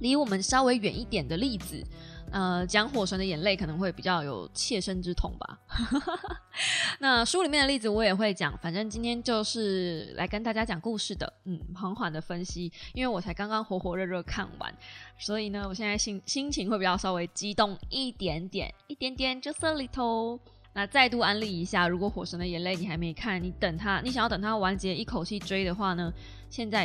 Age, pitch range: 20-39, 180-240 Hz